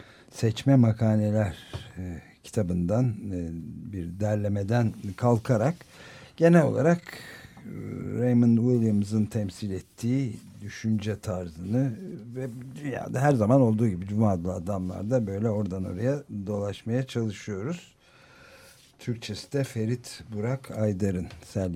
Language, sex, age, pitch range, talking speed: Turkish, male, 60-79, 100-125 Hz, 90 wpm